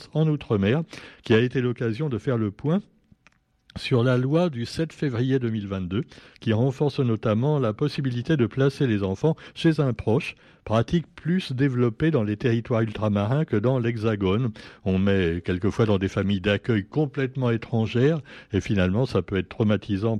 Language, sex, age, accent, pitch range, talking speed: French, male, 60-79, French, 100-140 Hz, 160 wpm